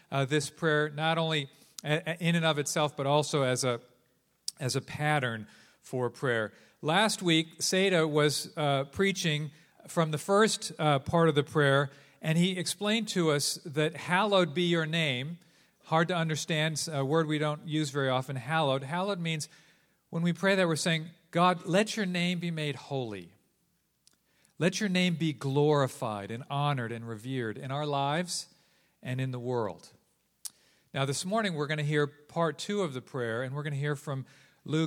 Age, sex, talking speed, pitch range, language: 40-59, male, 180 wpm, 135-165 Hz, English